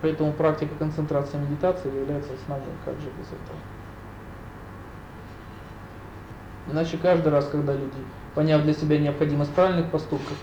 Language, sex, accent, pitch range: Russian, male, native, 110-160 Hz